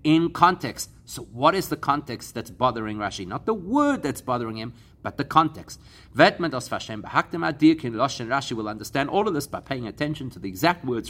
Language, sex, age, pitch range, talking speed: English, male, 40-59, 115-160 Hz, 175 wpm